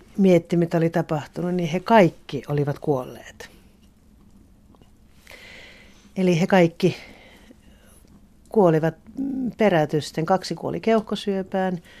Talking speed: 85 wpm